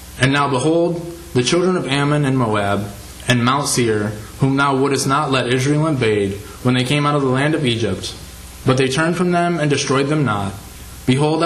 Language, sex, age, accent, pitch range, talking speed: English, male, 20-39, American, 100-140 Hz, 200 wpm